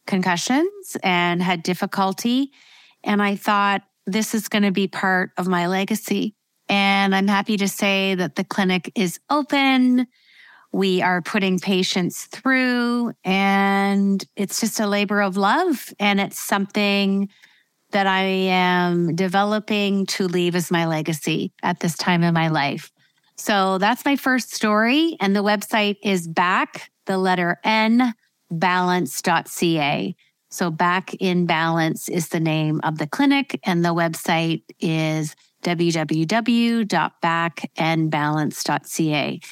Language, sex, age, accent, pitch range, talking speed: English, female, 30-49, American, 175-205 Hz, 130 wpm